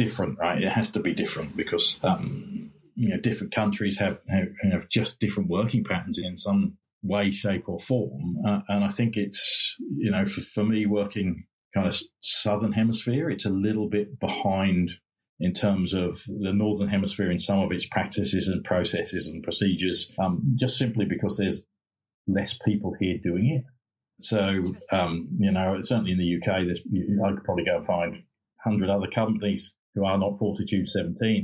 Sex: male